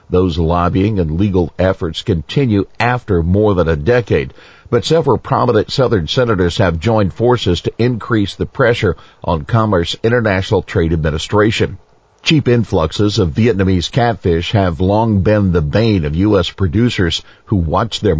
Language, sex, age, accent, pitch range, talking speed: English, male, 50-69, American, 90-115 Hz, 145 wpm